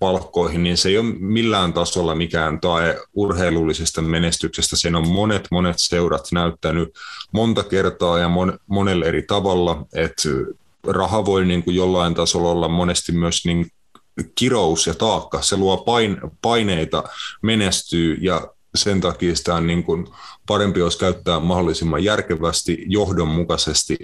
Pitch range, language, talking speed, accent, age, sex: 85-100 Hz, Finnish, 130 wpm, native, 30-49, male